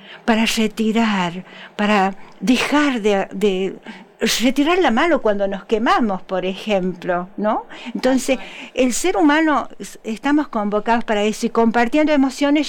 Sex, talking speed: female, 125 wpm